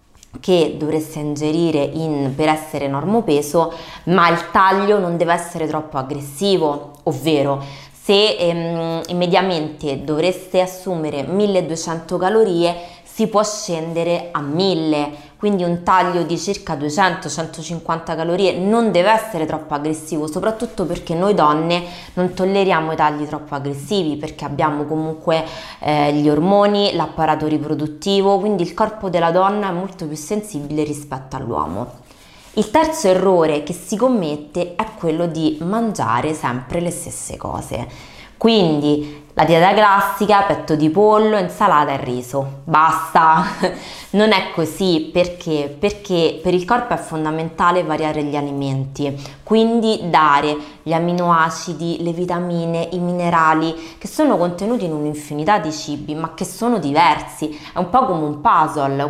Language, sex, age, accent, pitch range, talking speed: Italian, female, 20-39, native, 150-190 Hz, 135 wpm